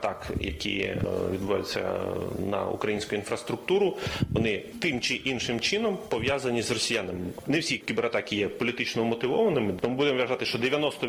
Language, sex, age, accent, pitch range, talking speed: Ukrainian, male, 30-49, native, 170-230 Hz, 135 wpm